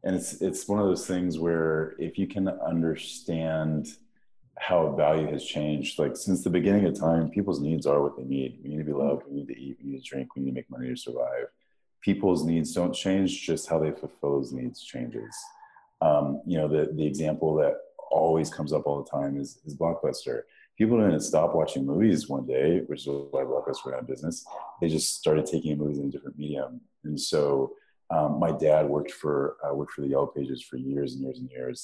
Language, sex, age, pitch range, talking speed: English, male, 30-49, 70-95 Hz, 220 wpm